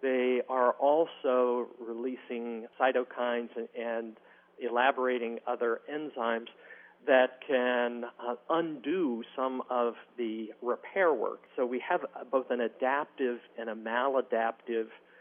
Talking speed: 110 wpm